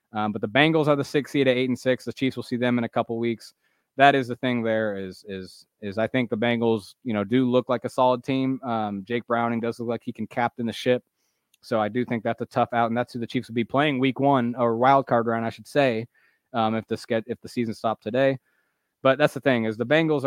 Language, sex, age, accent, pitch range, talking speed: English, male, 20-39, American, 115-130 Hz, 275 wpm